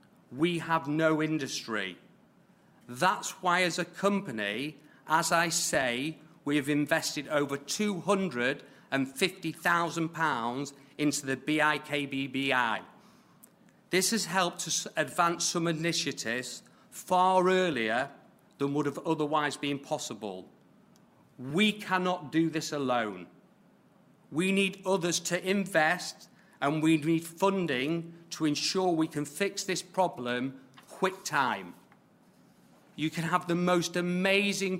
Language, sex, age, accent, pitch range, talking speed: English, male, 40-59, British, 145-180 Hz, 110 wpm